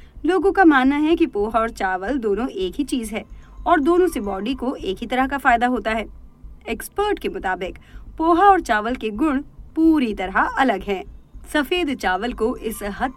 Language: Hindi